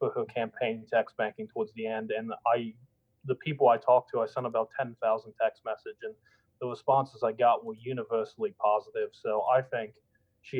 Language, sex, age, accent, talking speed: English, male, 20-39, American, 190 wpm